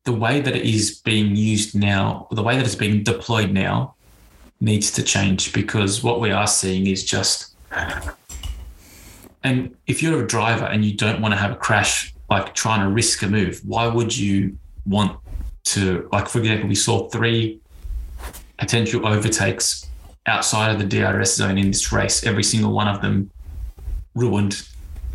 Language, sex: English, male